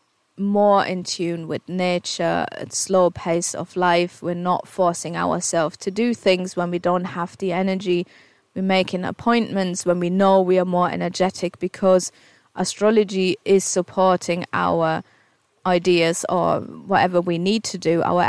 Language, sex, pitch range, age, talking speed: English, female, 175-200 Hz, 30-49, 150 wpm